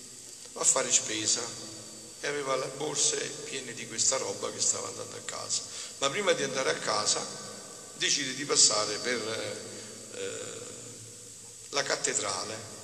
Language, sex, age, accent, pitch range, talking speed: Italian, male, 50-69, native, 110-165 Hz, 140 wpm